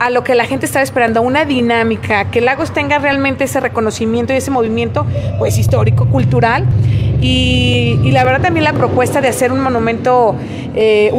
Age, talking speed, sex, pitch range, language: 30-49, 175 wpm, female, 220-265 Hz, Spanish